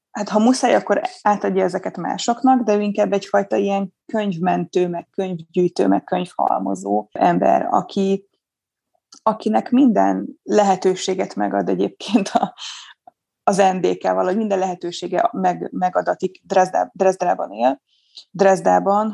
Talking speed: 115 wpm